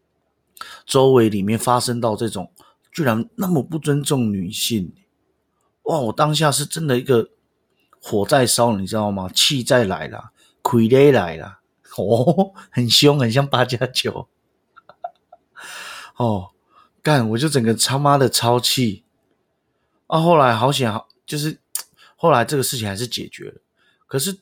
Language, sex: Chinese, male